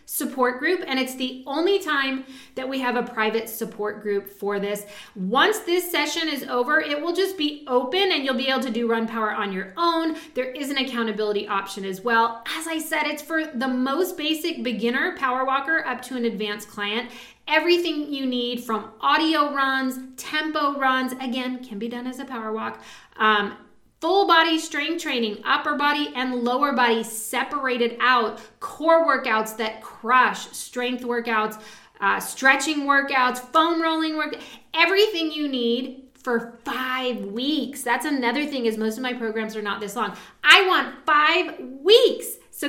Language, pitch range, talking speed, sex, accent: English, 225-295 Hz, 170 wpm, female, American